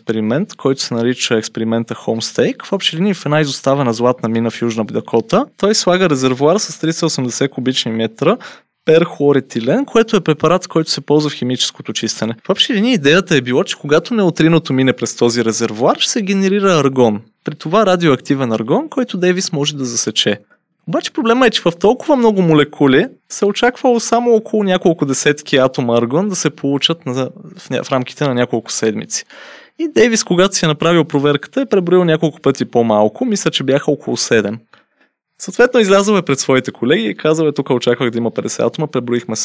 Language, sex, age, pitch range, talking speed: Bulgarian, male, 20-39, 125-185 Hz, 175 wpm